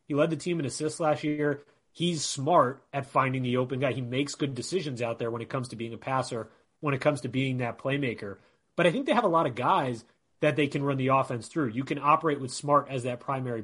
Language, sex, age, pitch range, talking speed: English, male, 30-49, 120-150 Hz, 260 wpm